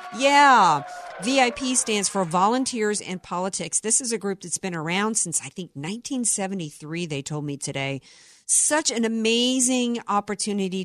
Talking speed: 145 wpm